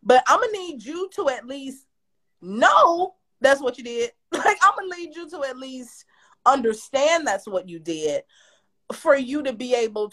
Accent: American